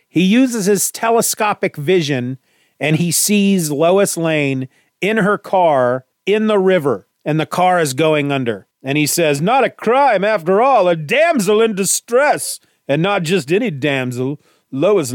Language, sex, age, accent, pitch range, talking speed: English, male, 40-59, American, 145-200 Hz, 155 wpm